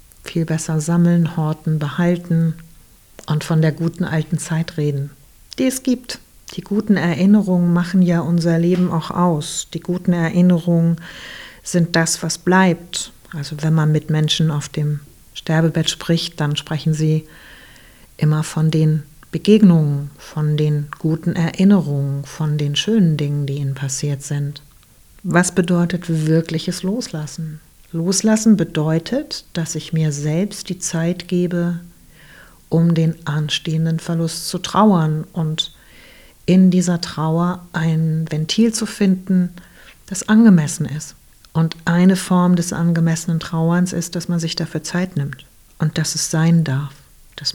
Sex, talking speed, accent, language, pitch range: female, 135 wpm, German, German, 155-175 Hz